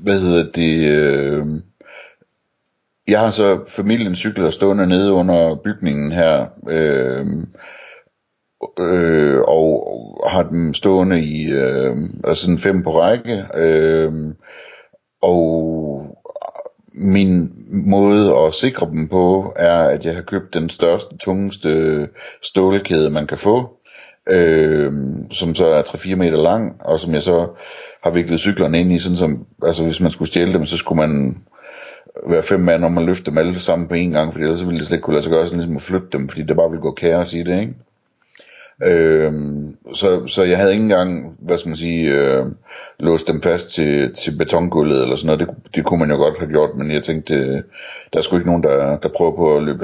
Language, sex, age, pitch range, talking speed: Danish, male, 60-79, 75-90 Hz, 185 wpm